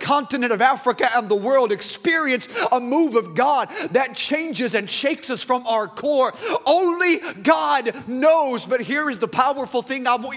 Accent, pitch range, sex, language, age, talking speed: American, 205-270 Hz, male, English, 30-49, 175 wpm